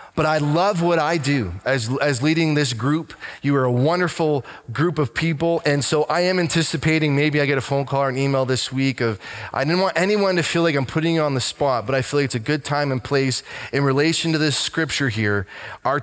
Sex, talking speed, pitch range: male, 245 wpm, 130-160 Hz